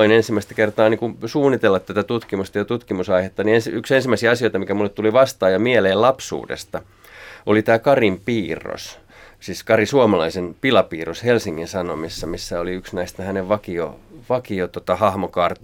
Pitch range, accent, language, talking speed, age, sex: 95-120 Hz, native, Finnish, 140 wpm, 30-49, male